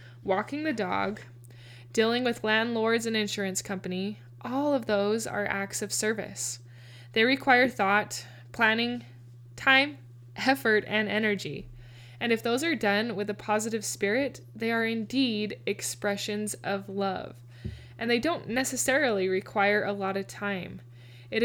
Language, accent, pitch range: English, American, 185-230 Hz